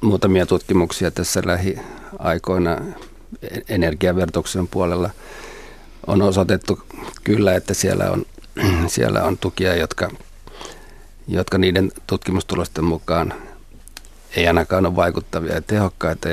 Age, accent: 50-69, native